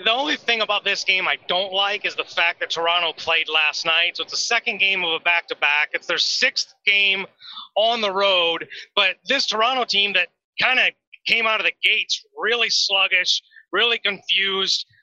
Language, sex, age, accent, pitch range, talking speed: English, male, 30-49, American, 180-220 Hz, 190 wpm